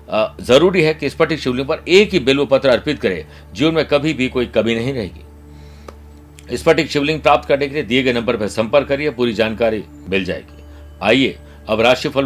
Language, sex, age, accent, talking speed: Hindi, male, 60-79, native, 55 wpm